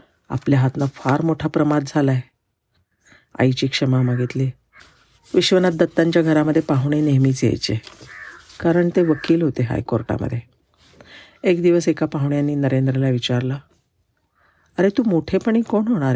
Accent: native